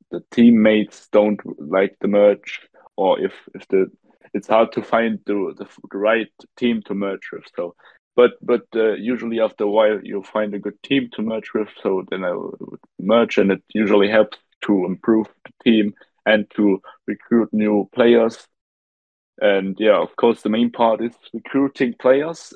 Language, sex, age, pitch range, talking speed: English, male, 20-39, 100-120 Hz, 175 wpm